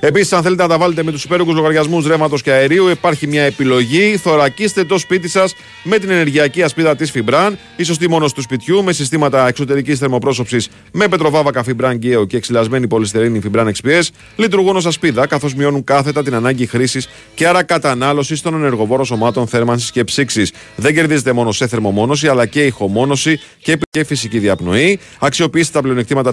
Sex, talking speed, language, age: male, 175 wpm, Greek, 40-59